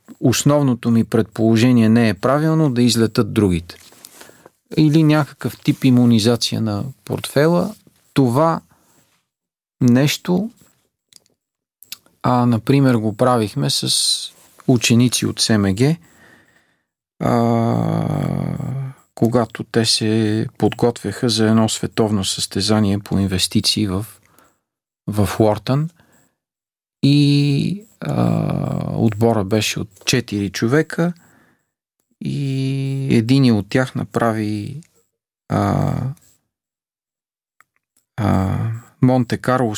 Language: Bulgarian